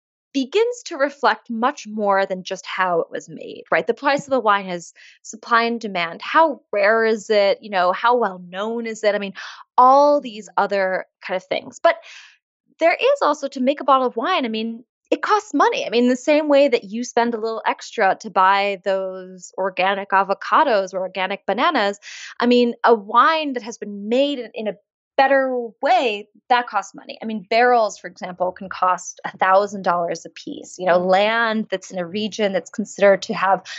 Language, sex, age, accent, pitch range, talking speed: English, female, 20-39, American, 200-270 Hz, 195 wpm